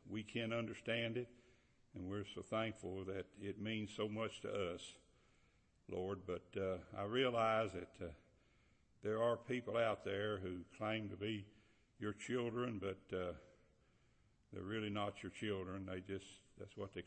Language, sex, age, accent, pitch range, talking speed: English, male, 60-79, American, 95-110 Hz, 160 wpm